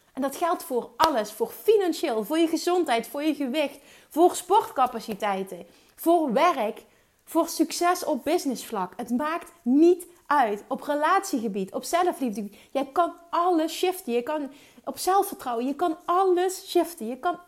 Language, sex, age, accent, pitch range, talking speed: Dutch, female, 30-49, Dutch, 215-320 Hz, 150 wpm